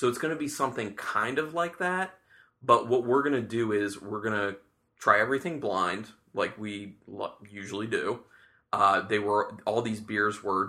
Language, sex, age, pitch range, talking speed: English, male, 20-39, 100-120 Hz, 190 wpm